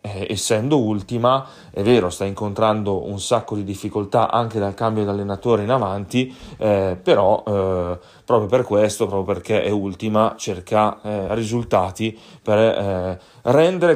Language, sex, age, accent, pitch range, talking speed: Italian, male, 30-49, native, 100-115 Hz, 140 wpm